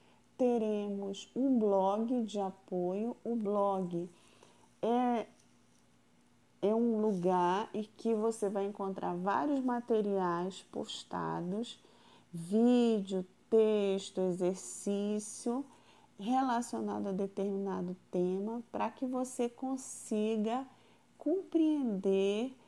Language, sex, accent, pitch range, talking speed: Portuguese, female, Brazilian, 195-260 Hz, 80 wpm